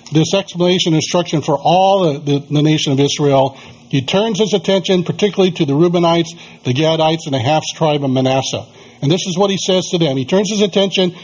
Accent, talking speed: American, 205 wpm